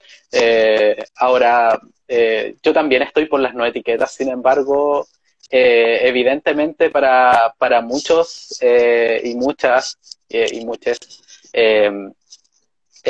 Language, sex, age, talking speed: Spanish, male, 20-39, 110 wpm